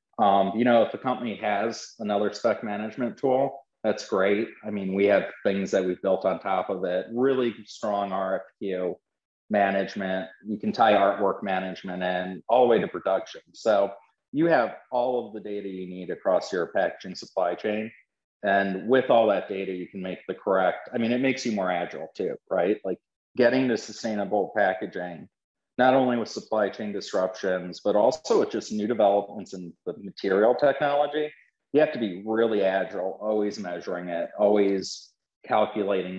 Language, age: English, 40-59